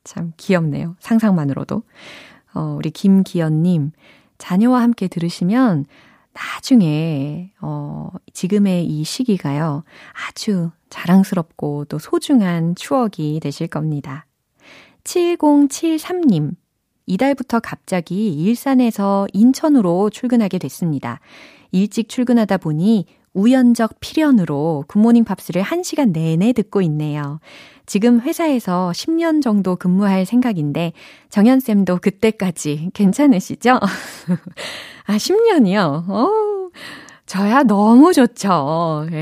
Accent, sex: native, female